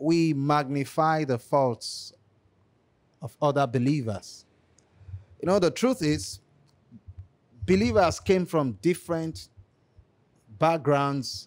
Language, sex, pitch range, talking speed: Filipino, male, 125-175 Hz, 90 wpm